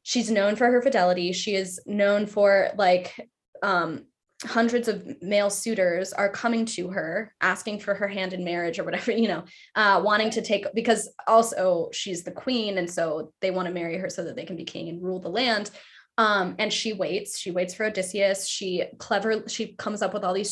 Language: English